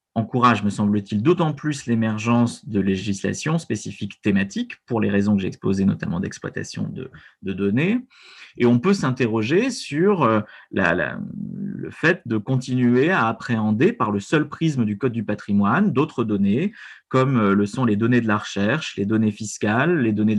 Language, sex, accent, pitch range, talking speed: French, male, French, 105-140 Hz, 160 wpm